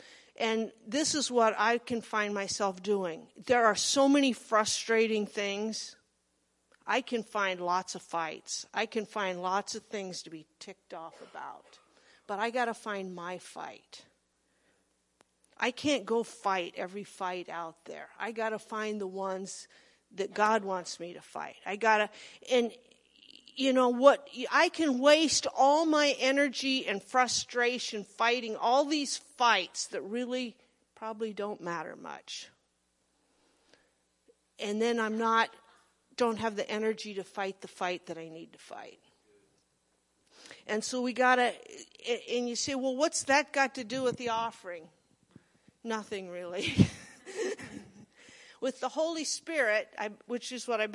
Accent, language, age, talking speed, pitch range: American, English, 50-69, 150 wpm, 195-255 Hz